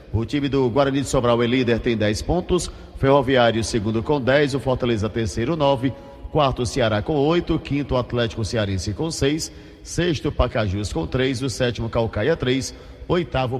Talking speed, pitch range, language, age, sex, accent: 170 wpm, 115-150 Hz, Portuguese, 50-69, male, Brazilian